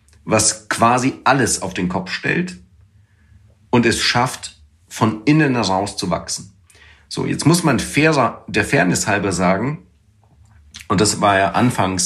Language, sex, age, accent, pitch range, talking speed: German, male, 40-59, German, 95-120 Hz, 145 wpm